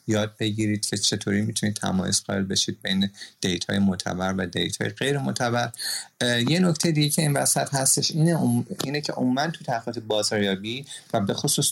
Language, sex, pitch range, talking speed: Persian, male, 95-115 Hz, 170 wpm